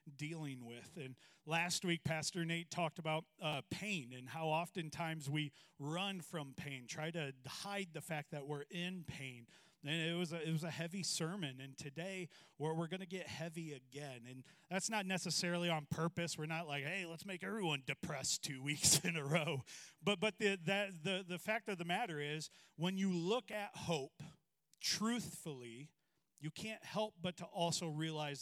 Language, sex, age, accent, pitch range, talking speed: English, male, 40-59, American, 150-180 Hz, 185 wpm